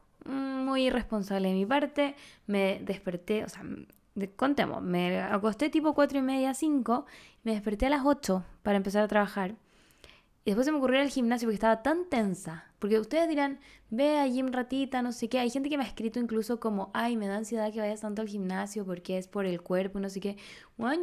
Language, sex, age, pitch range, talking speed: Spanish, female, 20-39, 195-260 Hz, 210 wpm